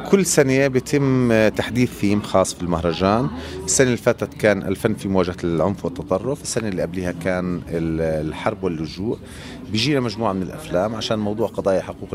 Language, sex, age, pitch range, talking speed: Arabic, male, 30-49, 95-130 Hz, 150 wpm